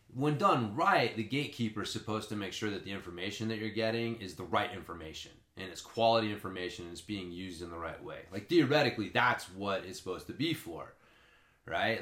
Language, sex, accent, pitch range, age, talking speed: English, male, American, 100-120 Hz, 30-49, 210 wpm